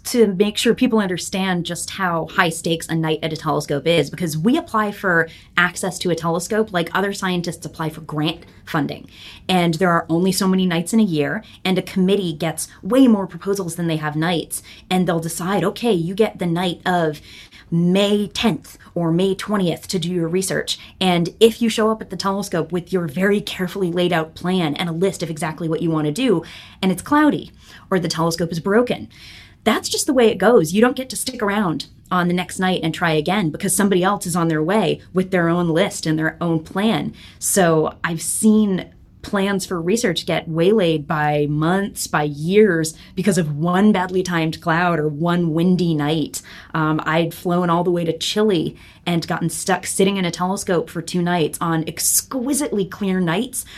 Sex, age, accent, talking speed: female, 20-39, American, 200 wpm